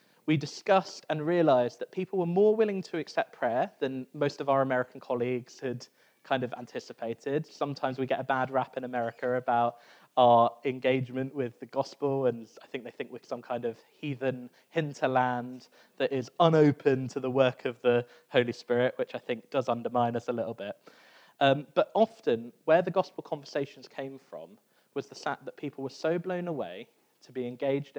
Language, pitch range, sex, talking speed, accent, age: English, 125-155 Hz, male, 185 wpm, British, 20-39